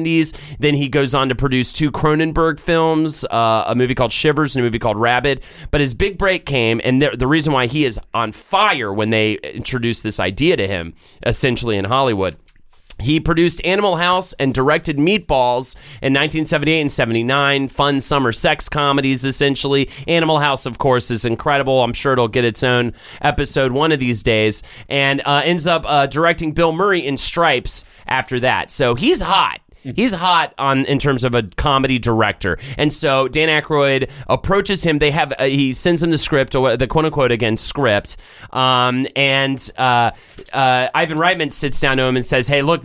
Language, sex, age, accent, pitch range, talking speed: English, male, 30-49, American, 125-155 Hz, 185 wpm